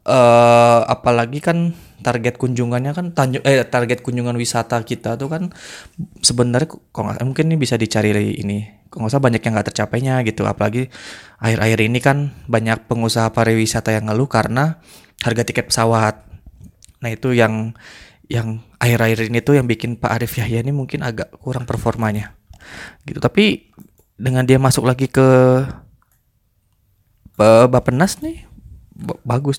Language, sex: Indonesian, male